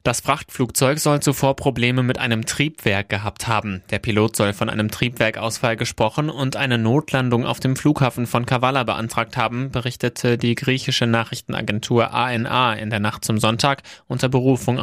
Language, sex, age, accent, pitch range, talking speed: German, male, 20-39, German, 110-130 Hz, 160 wpm